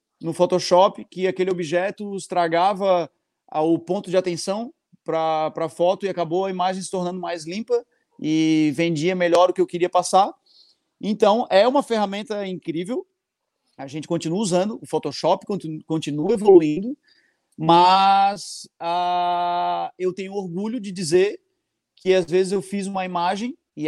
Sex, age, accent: male, 30-49, Brazilian